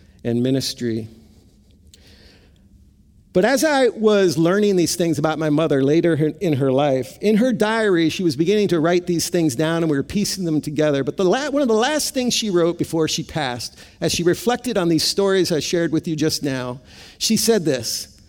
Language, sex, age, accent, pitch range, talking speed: English, male, 50-69, American, 120-190 Hz, 200 wpm